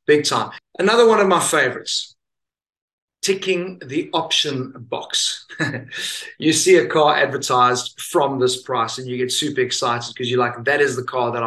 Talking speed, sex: 165 wpm, male